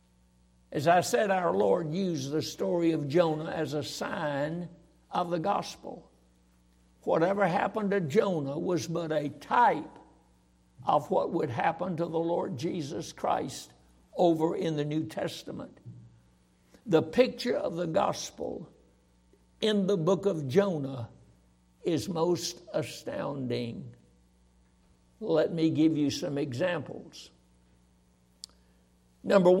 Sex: male